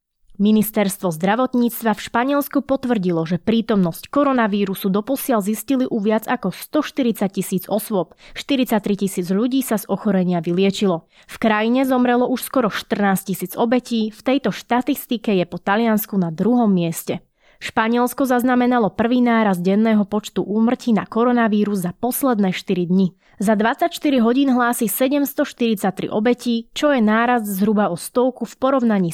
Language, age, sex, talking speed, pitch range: Slovak, 20-39, female, 140 wpm, 195-245 Hz